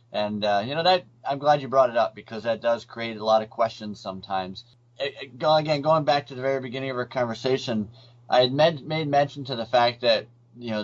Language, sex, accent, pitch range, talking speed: English, male, American, 105-130 Hz, 220 wpm